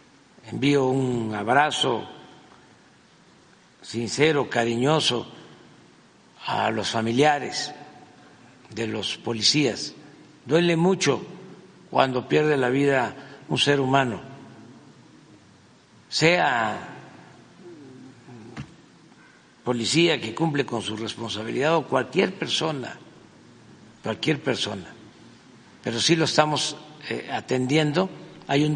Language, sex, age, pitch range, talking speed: Spanish, male, 60-79, 115-150 Hz, 80 wpm